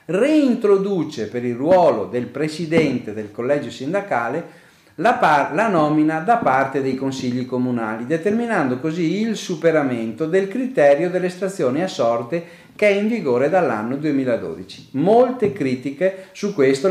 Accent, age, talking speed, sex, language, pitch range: native, 40-59, 135 wpm, male, Italian, 125-185 Hz